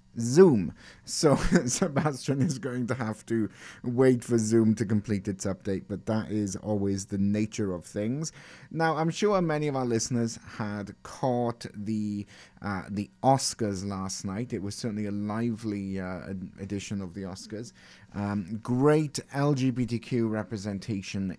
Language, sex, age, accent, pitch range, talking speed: English, male, 30-49, British, 95-125 Hz, 145 wpm